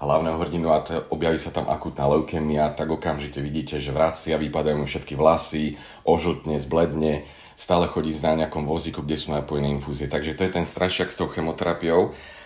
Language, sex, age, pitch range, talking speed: Slovak, male, 40-59, 75-90 Hz, 180 wpm